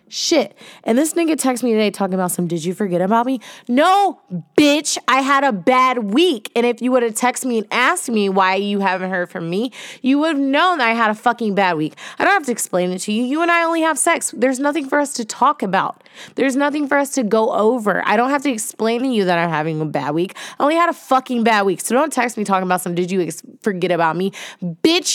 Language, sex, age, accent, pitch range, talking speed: English, female, 20-39, American, 195-280 Hz, 265 wpm